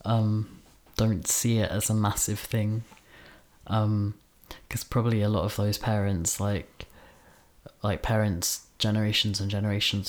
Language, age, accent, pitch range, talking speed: English, 20-39, British, 90-105 Hz, 130 wpm